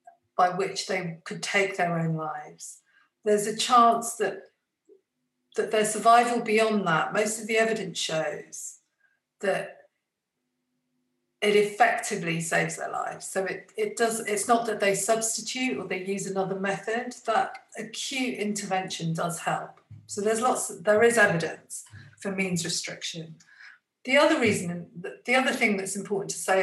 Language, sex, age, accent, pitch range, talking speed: English, female, 50-69, British, 175-225 Hz, 150 wpm